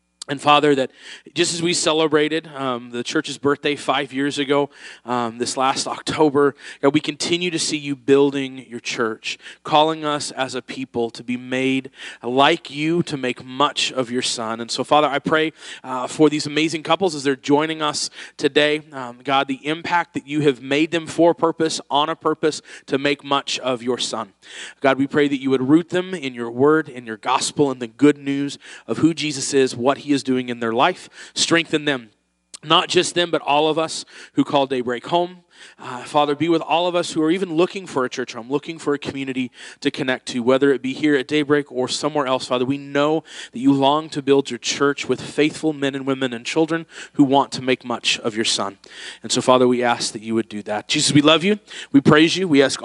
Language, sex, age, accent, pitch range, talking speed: English, male, 30-49, American, 130-155 Hz, 225 wpm